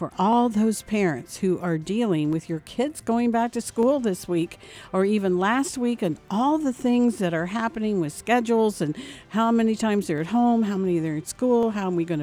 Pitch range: 165-215 Hz